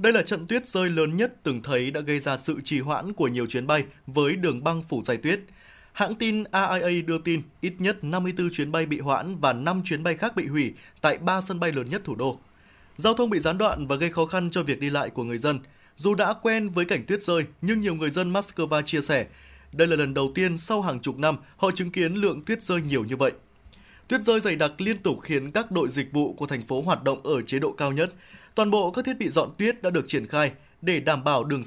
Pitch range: 140-190 Hz